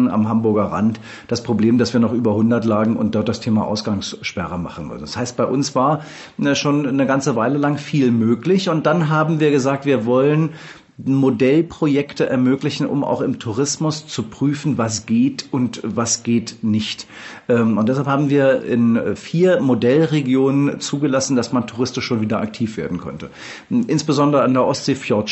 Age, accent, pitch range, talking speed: 40-59, German, 115-145 Hz, 165 wpm